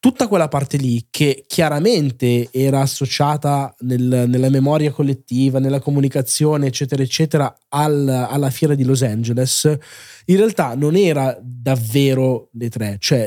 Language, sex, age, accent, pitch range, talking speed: Italian, male, 20-39, native, 130-155 Hz, 125 wpm